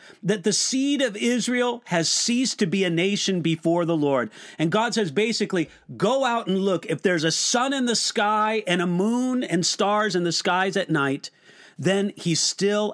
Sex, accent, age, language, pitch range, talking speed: male, American, 50-69, English, 160-215 Hz, 195 wpm